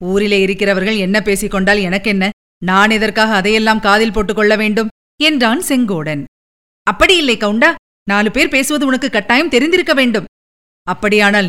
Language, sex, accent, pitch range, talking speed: Tamil, female, native, 220-285 Hz, 125 wpm